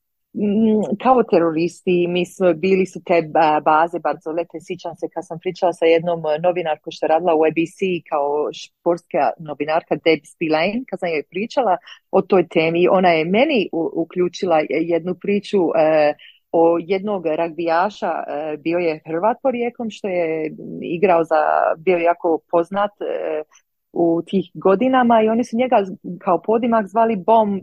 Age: 30-49